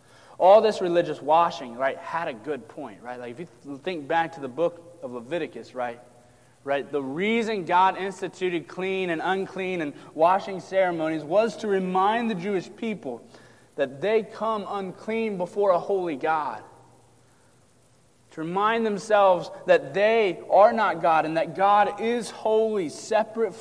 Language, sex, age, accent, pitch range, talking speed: English, male, 30-49, American, 125-195 Hz, 155 wpm